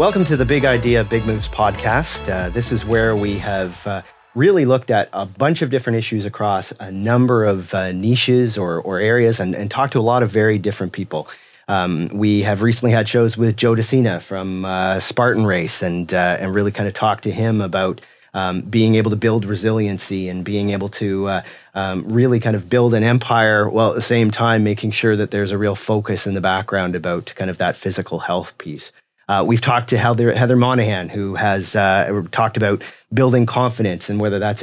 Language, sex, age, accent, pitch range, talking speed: English, male, 30-49, American, 100-115 Hz, 210 wpm